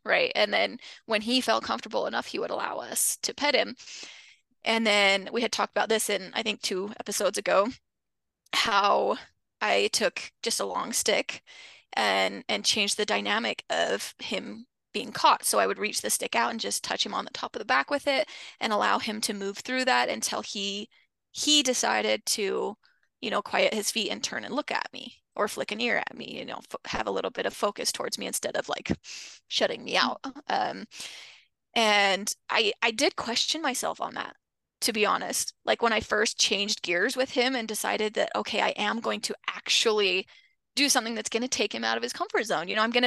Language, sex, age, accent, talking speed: English, female, 20-39, American, 215 wpm